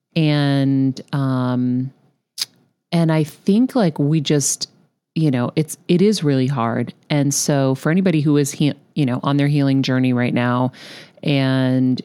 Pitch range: 130-165 Hz